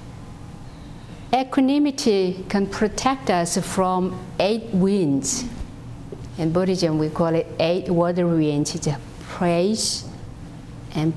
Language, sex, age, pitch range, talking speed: English, female, 50-69, 160-200 Hz, 90 wpm